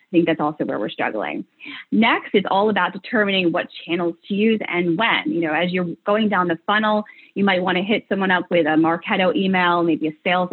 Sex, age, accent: female, 20-39, American